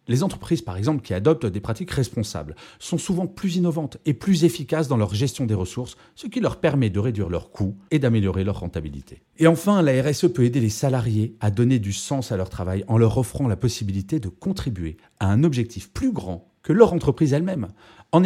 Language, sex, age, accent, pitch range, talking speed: French, male, 40-59, French, 105-155 Hz, 215 wpm